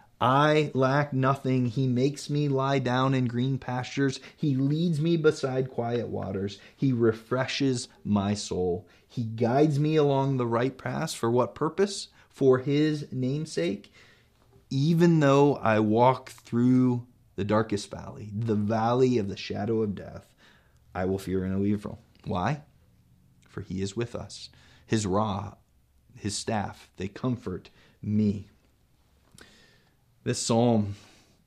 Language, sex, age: English, male, 20-39